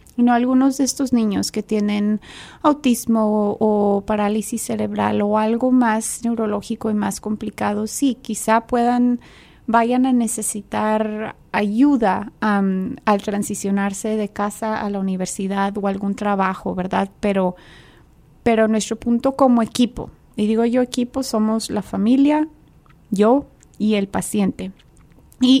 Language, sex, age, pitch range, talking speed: English, female, 30-49, 210-245 Hz, 135 wpm